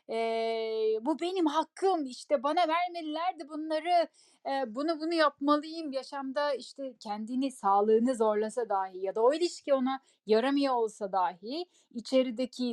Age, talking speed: 10-29, 125 wpm